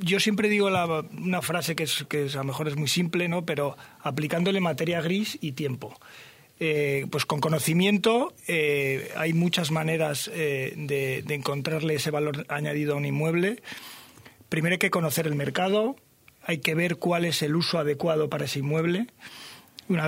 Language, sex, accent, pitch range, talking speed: Spanish, male, Spanish, 150-180 Hz, 175 wpm